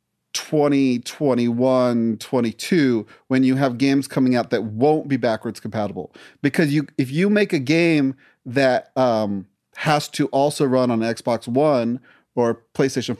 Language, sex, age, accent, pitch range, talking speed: English, male, 30-49, American, 115-140 Hz, 145 wpm